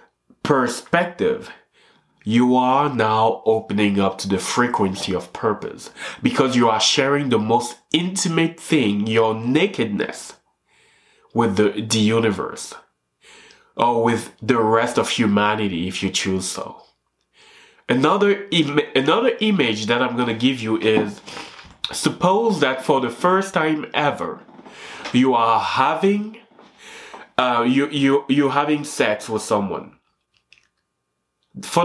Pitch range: 110-175 Hz